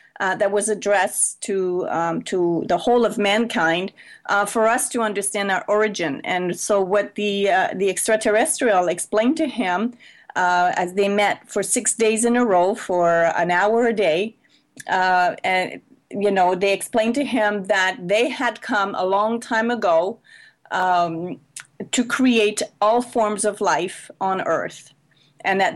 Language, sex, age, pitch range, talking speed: English, female, 30-49, 190-225 Hz, 165 wpm